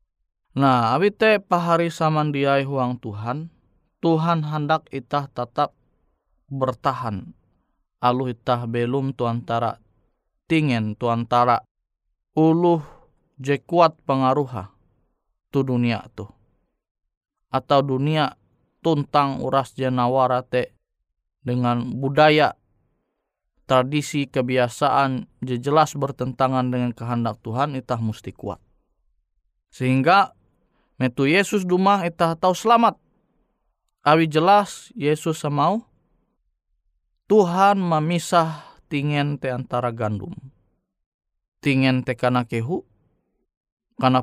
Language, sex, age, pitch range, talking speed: Indonesian, male, 20-39, 120-155 Hz, 85 wpm